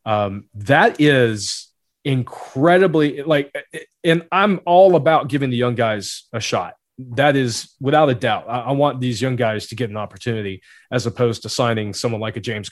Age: 30-49